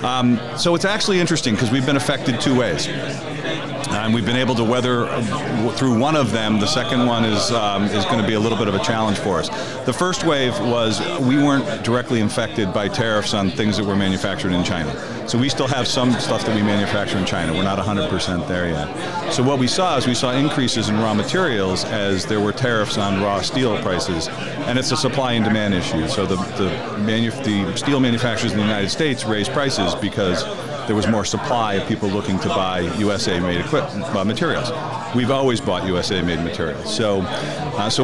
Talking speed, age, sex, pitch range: 210 wpm, 40-59, male, 100-130 Hz